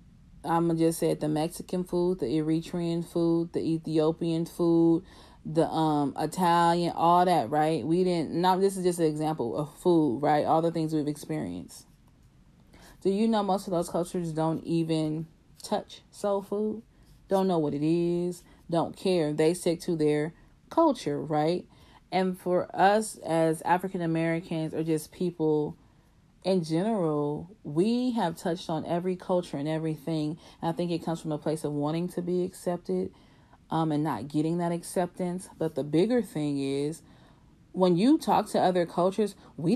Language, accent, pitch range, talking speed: English, American, 160-195 Hz, 170 wpm